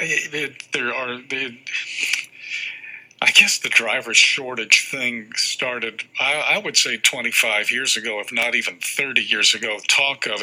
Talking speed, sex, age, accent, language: 155 wpm, male, 50-69, American, English